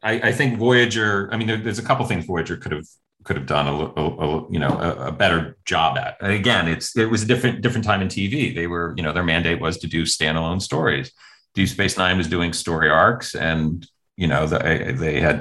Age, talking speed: 40-59, 240 wpm